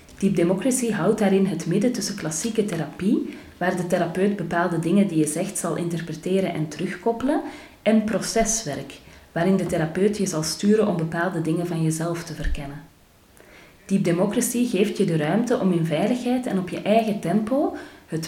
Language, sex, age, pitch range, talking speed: Dutch, female, 30-49, 165-210 Hz, 160 wpm